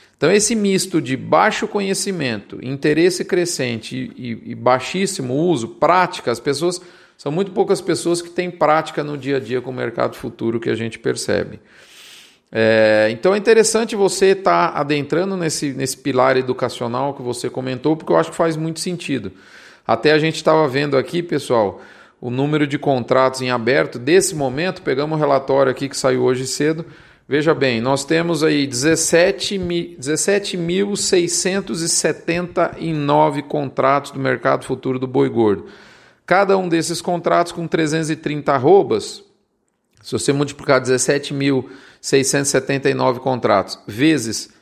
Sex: male